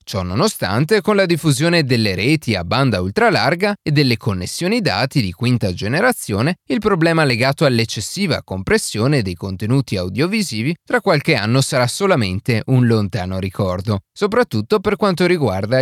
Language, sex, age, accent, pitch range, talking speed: Italian, male, 30-49, native, 105-165 Hz, 140 wpm